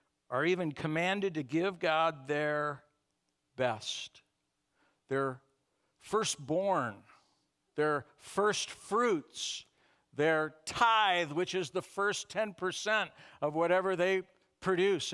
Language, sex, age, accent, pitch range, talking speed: English, male, 60-79, American, 140-205 Hz, 100 wpm